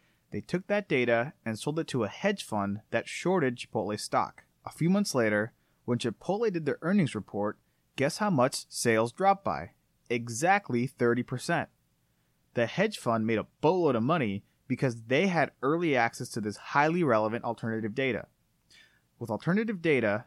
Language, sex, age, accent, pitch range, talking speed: English, male, 30-49, American, 115-155 Hz, 165 wpm